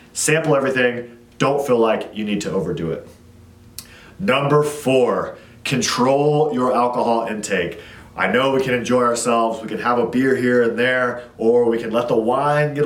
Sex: male